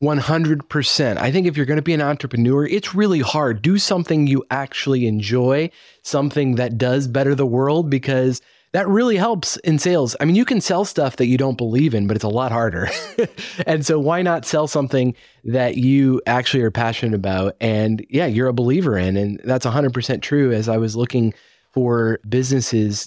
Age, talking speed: 30-49, 200 wpm